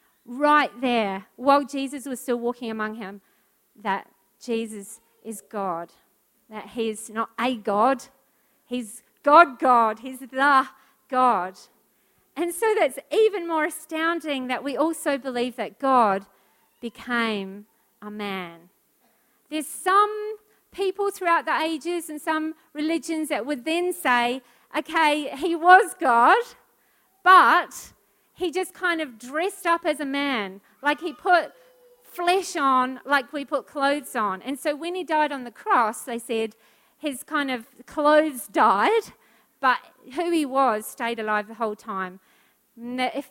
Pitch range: 225-315 Hz